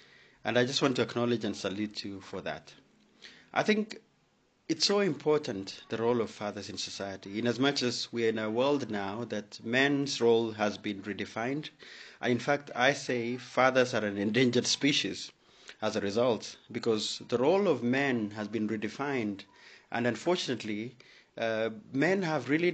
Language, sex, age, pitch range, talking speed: English, male, 30-49, 110-140 Hz, 170 wpm